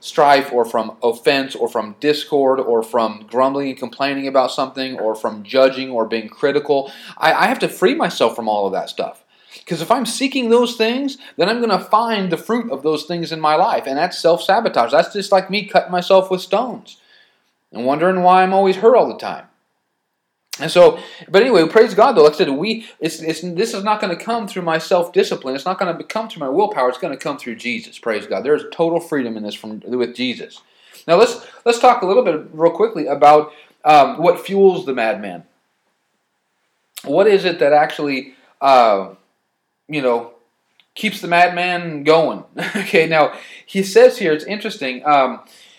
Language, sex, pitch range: English, male, 130-200 Hz